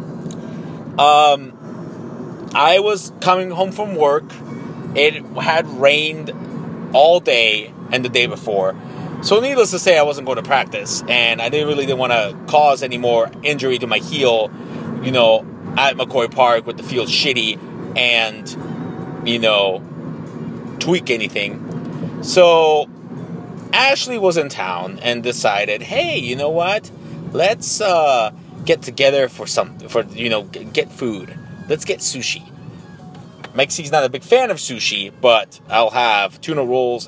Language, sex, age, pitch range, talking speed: English, male, 30-49, 125-175 Hz, 145 wpm